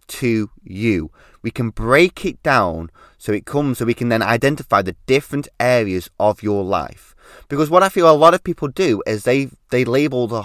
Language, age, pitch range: English, 20-39, 110-145 Hz